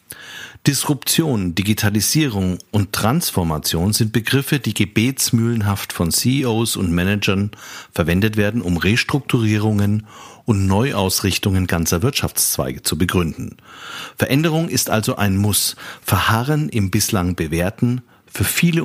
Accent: German